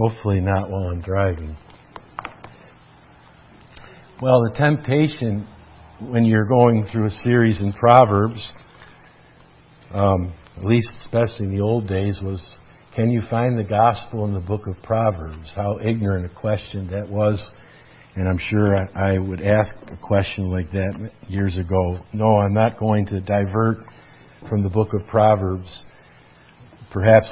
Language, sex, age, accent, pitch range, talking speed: English, male, 50-69, American, 95-110 Hz, 145 wpm